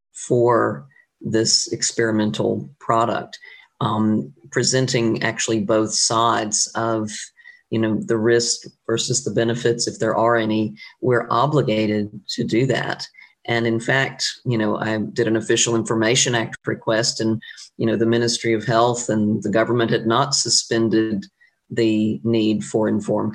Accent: American